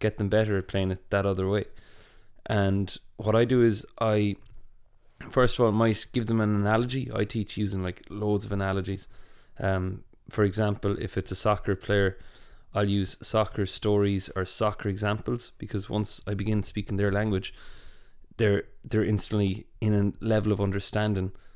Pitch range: 95-110 Hz